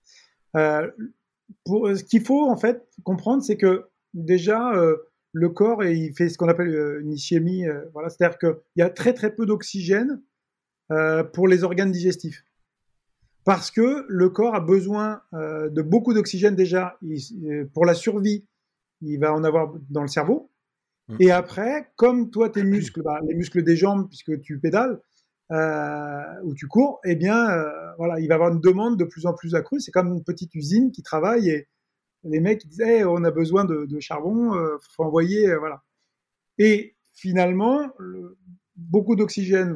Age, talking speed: 30-49, 185 wpm